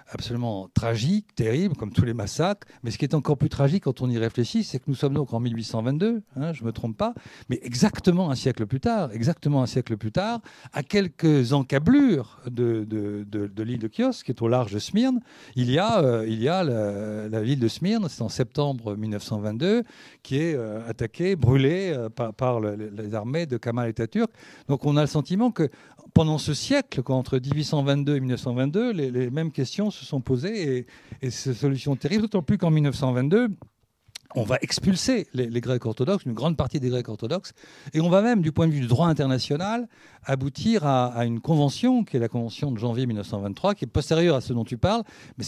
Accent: French